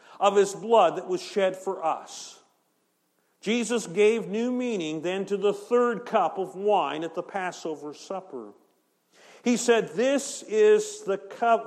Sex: male